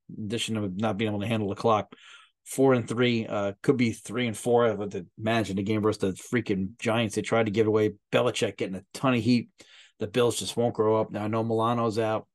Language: English